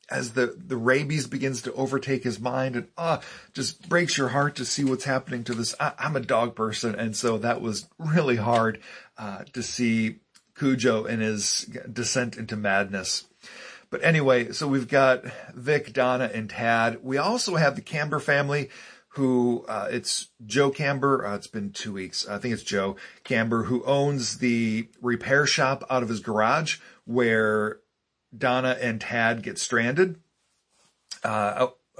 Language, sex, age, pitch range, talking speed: English, male, 40-59, 110-135 Hz, 165 wpm